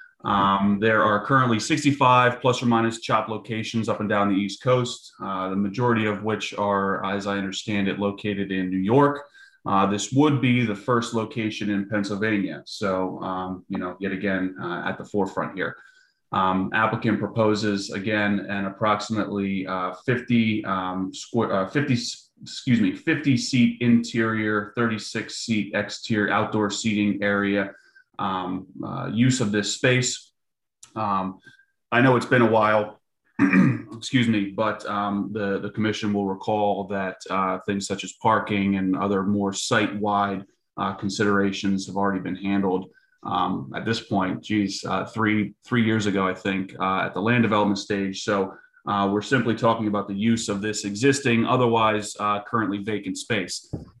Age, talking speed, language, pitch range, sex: 30-49, 160 wpm, English, 100-115 Hz, male